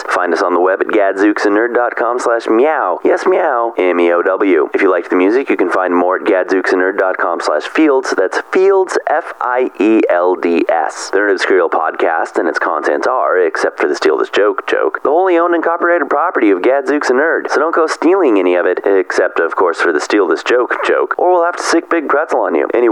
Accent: American